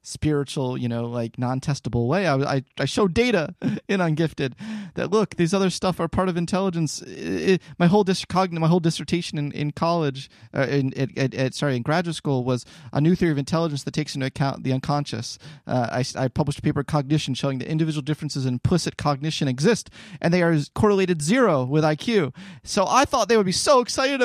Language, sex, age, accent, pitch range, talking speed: English, male, 30-49, American, 130-175 Hz, 200 wpm